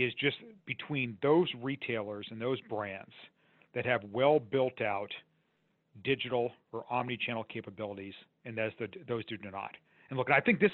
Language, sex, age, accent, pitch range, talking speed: English, male, 40-59, American, 110-145 Hz, 150 wpm